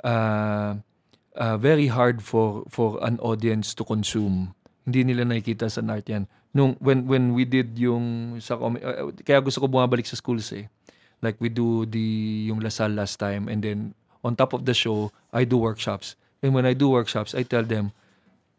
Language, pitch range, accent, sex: Filipino, 110-130 Hz, native, male